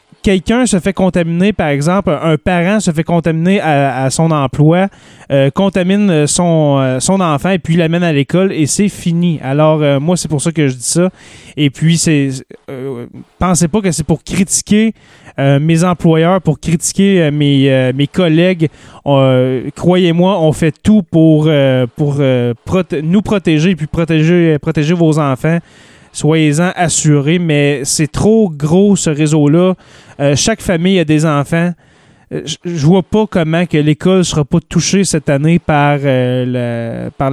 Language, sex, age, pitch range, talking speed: French, male, 20-39, 140-180 Hz, 170 wpm